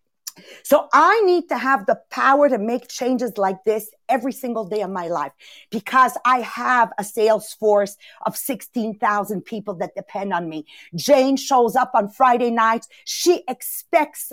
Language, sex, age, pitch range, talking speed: English, female, 50-69, 220-310 Hz, 165 wpm